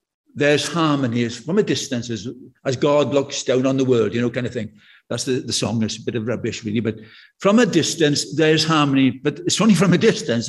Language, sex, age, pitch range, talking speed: English, male, 60-79, 150-195 Hz, 230 wpm